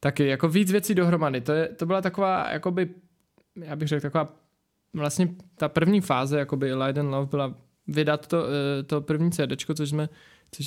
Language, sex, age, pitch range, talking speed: Czech, male, 20-39, 145-170 Hz, 175 wpm